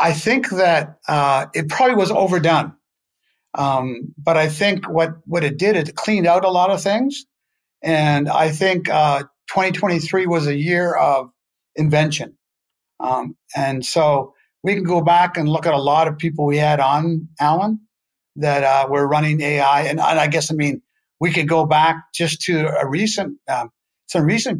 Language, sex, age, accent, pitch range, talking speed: English, male, 50-69, American, 145-175 Hz, 180 wpm